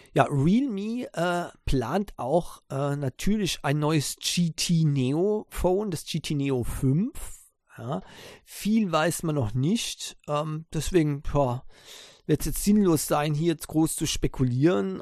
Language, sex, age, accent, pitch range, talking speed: German, male, 50-69, German, 125-160 Hz, 135 wpm